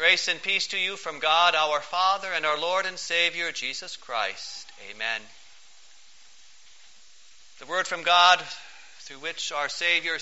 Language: English